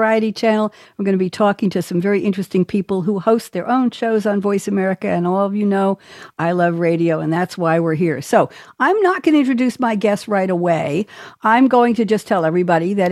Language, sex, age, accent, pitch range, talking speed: English, female, 60-79, American, 180-240 Hz, 230 wpm